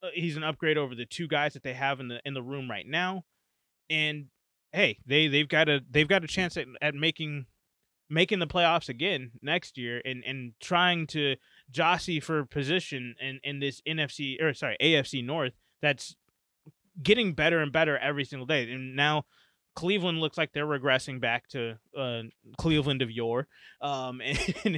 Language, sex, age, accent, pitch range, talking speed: English, male, 20-39, American, 130-155 Hz, 180 wpm